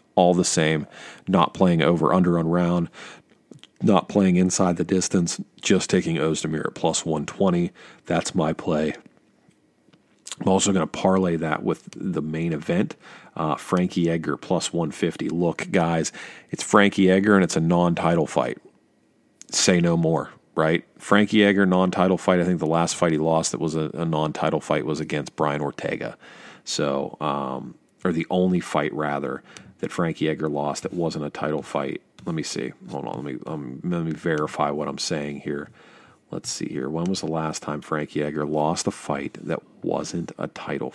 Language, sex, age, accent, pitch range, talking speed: English, male, 40-59, American, 80-95 Hz, 175 wpm